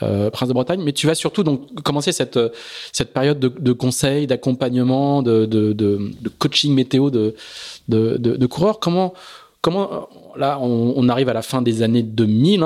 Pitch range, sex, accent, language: 115-150 Hz, male, French, French